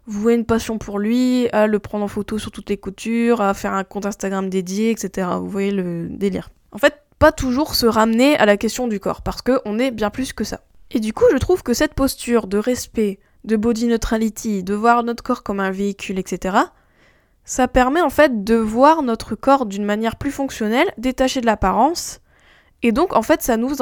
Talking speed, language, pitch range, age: 215 wpm, French, 210-260 Hz, 10-29